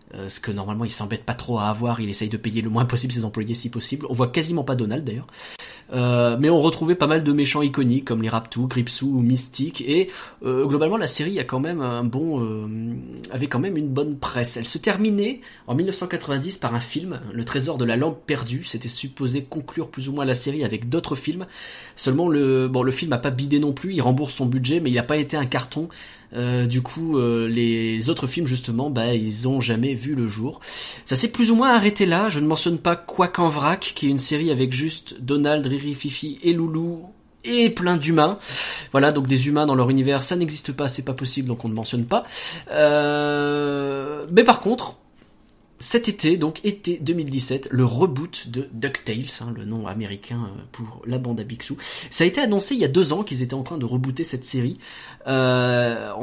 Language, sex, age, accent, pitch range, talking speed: French, male, 20-39, French, 120-160 Hz, 220 wpm